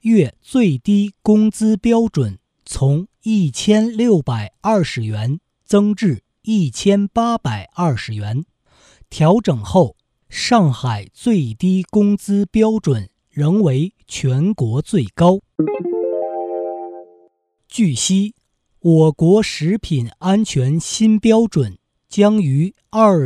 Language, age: Chinese, 50-69